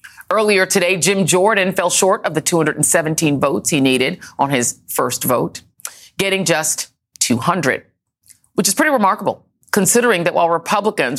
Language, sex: English, female